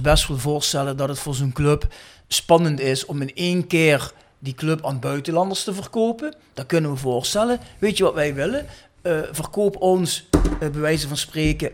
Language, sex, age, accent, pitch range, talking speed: Dutch, male, 40-59, Dutch, 135-175 Hz, 185 wpm